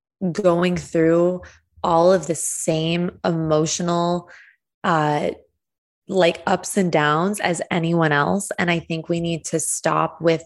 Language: English